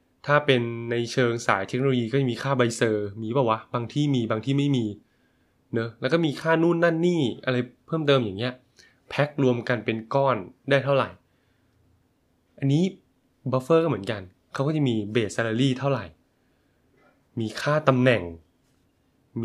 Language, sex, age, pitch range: Thai, male, 20-39, 115-140 Hz